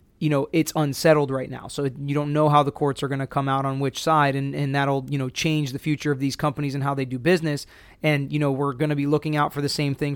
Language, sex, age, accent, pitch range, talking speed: English, male, 20-39, American, 140-155 Hz, 295 wpm